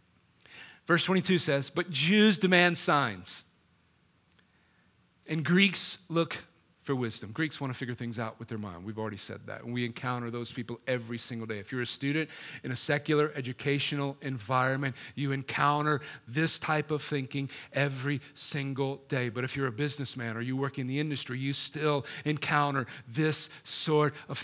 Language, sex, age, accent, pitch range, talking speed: English, male, 40-59, American, 135-165 Hz, 165 wpm